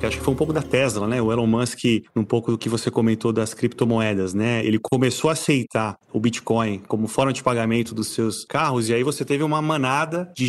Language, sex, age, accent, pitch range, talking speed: Portuguese, male, 30-49, Brazilian, 115-140 Hz, 230 wpm